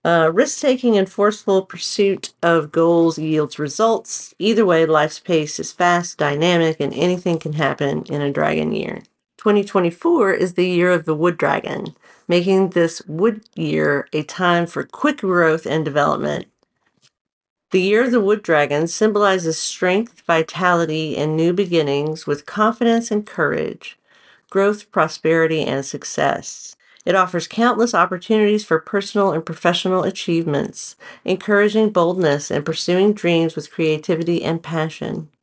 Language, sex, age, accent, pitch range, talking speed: English, female, 50-69, American, 155-195 Hz, 135 wpm